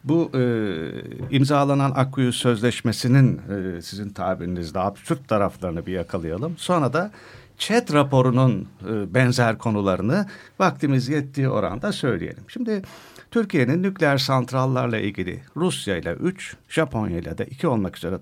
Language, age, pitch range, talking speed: Turkish, 50-69, 100-150 Hz, 120 wpm